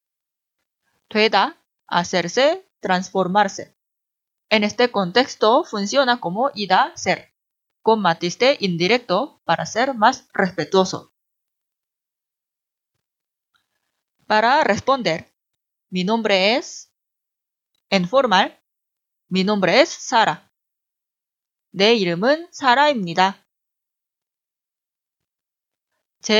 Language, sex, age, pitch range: Korean, female, 30-49, 185-260 Hz